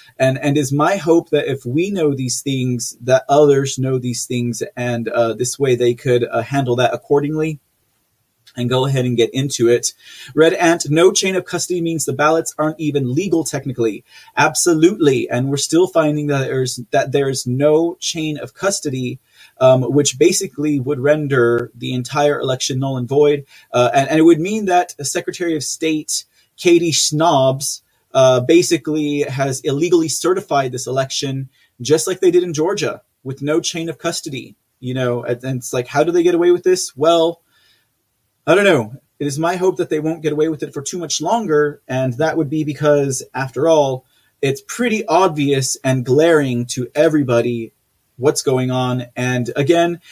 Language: English